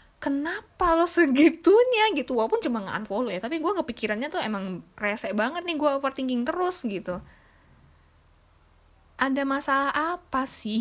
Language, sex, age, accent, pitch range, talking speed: Indonesian, female, 10-29, native, 215-315 Hz, 135 wpm